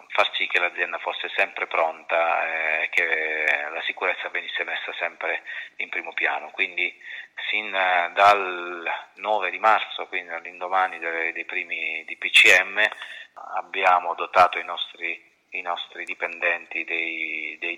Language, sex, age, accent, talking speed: Italian, male, 30-49, native, 120 wpm